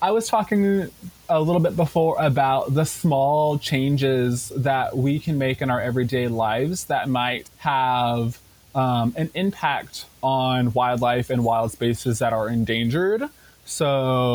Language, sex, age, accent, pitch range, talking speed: English, male, 20-39, American, 130-180 Hz, 140 wpm